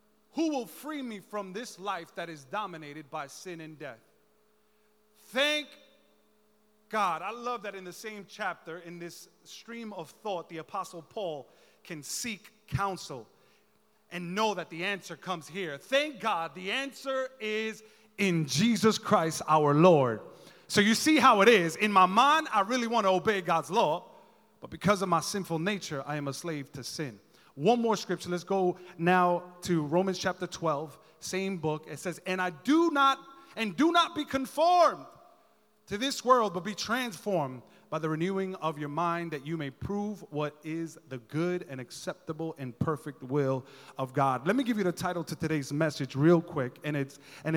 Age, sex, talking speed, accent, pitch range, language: 30-49, male, 180 wpm, American, 160-215 Hz, English